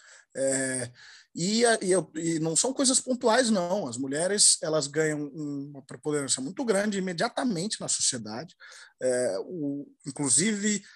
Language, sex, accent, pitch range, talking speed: Portuguese, male, Brazilian, 155-210 Hz, 125 wpm